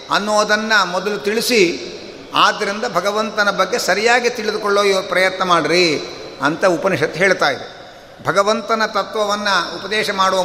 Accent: native